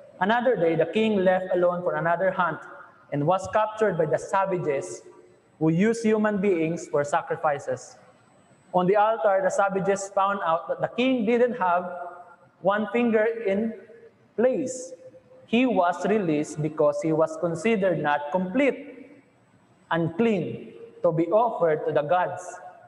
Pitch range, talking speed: 175-230 Hz, 140 wpm